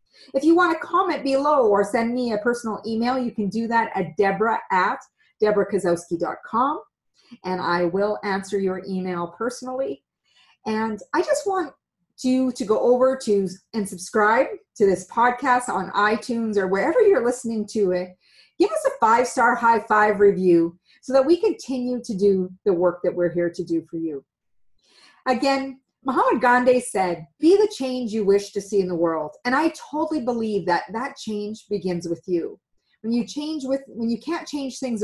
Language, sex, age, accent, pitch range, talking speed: English, female, 40-59, American, 185-250 Hz, 180 wpm